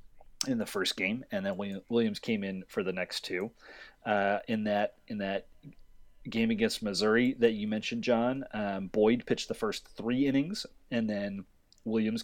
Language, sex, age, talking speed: English, male, 30-49, 170 wpm